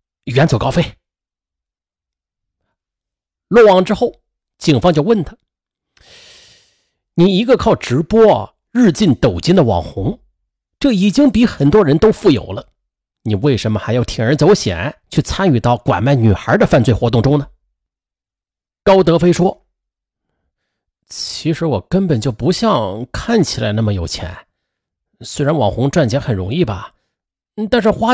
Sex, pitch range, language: male, 110-185 Hz, Chinese